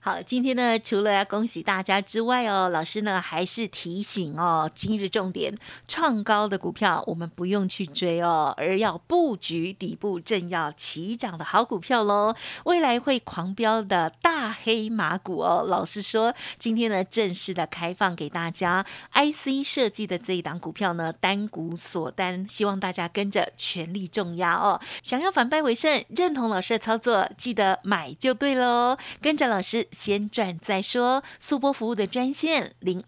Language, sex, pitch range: Chinese, female, 185-250 Hz